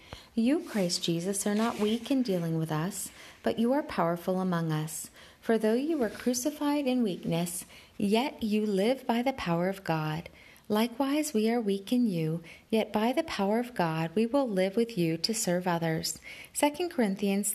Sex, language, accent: female, English, American